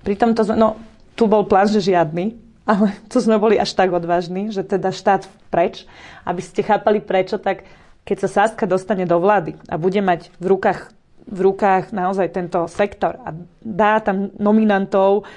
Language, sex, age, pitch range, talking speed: Slovak, female, 30-49, 190-225 Hz, 170 wpm